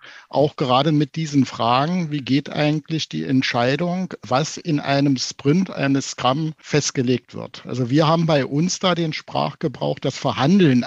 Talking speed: 155 wpm